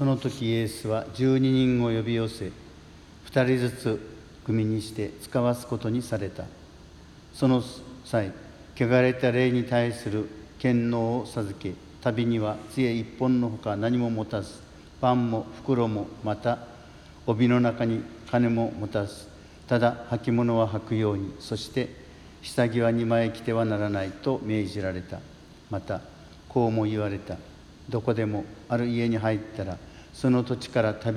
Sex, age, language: male, 50-69, Japanese